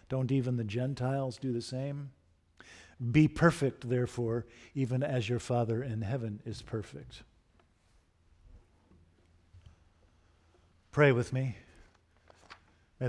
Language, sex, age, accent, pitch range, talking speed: English, male, 50-69, American, 115-145 Hz, 100 wpm